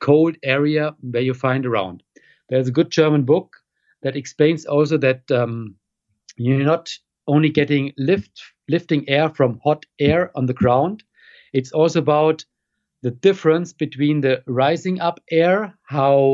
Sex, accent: male, German